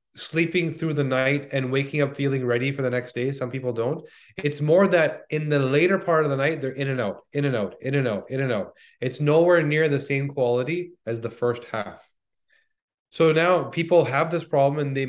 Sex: male